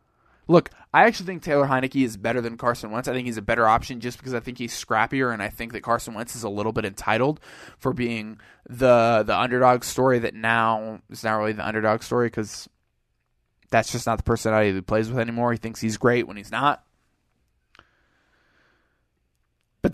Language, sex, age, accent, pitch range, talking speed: English, male, 20-39, American, 115-145 Hz, 200 wpm